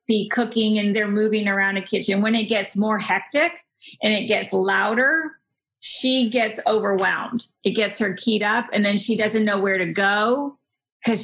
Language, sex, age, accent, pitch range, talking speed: English, female, 40-59, American, 205-245 Hz, 180 wpm